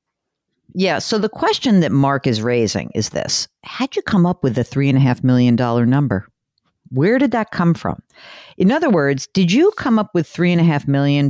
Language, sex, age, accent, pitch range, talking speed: English, female, 50-69, American, 140-210 Hz, 220 wpm